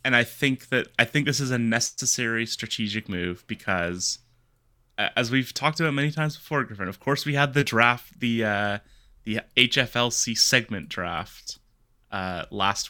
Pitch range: 100-125 Hz